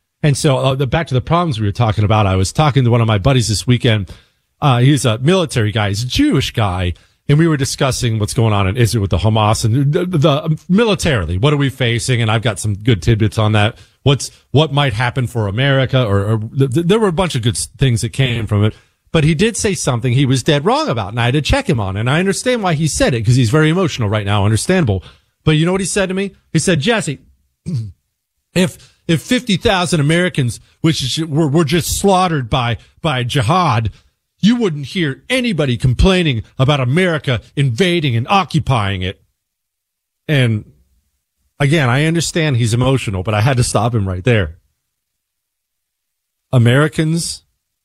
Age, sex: 40-59, male